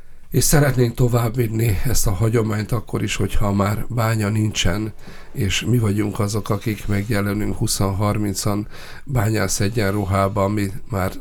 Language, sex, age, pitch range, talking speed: Hungarian, male, 50-69, 90-105 Hz, 125 wpm